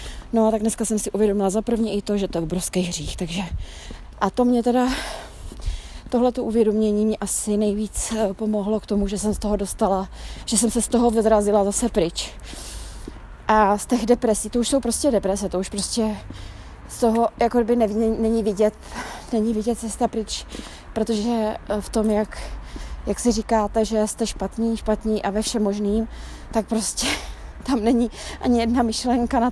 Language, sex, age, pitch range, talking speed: Czech, female, 20-39, 205-235 Hz, 175 wpm